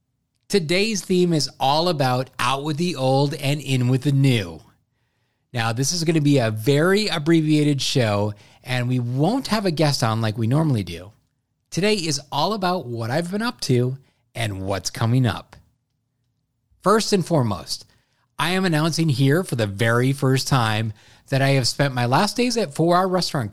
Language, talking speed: English, 180 wpm